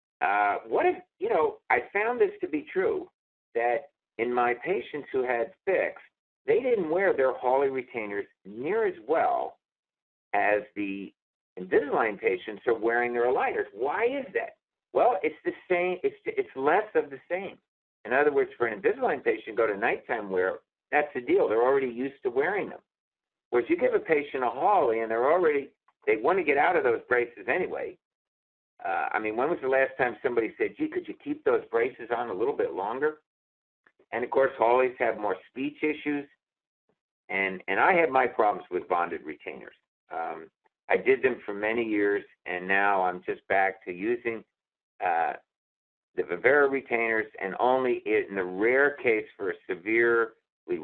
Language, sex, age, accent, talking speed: English, male, 50-69, American, 180 wpm